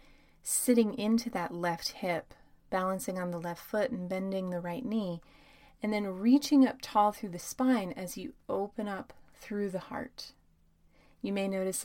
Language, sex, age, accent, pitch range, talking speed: English, female, 30-49, American, 175-220 Hz, 165 wpm